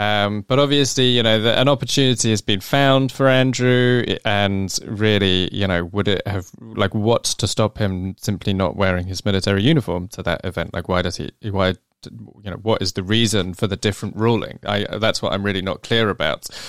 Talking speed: 200 wpm